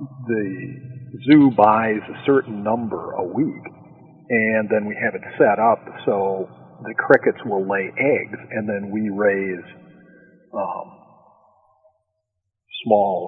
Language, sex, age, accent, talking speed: English, male, 50-69, American, 120 wpm